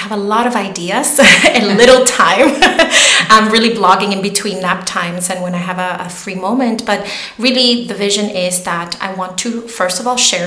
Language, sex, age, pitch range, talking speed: English, female, 30-49, 180-215 Hz, 200 wpm